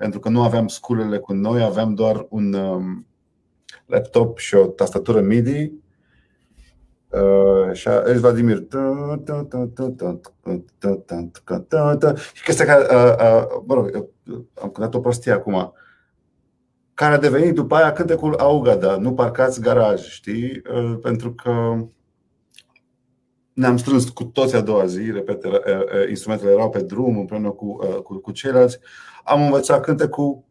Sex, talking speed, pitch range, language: male, 125 wpm, 105-135 Hz, Romanian